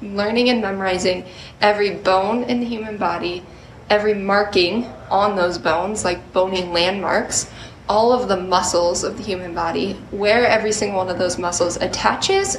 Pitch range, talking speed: 180-215 Hz, 155 wpm